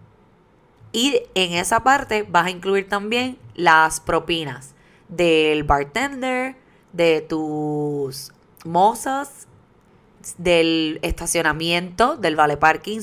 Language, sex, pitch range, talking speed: Spanish, female, 155-195 Hz, 90 wpm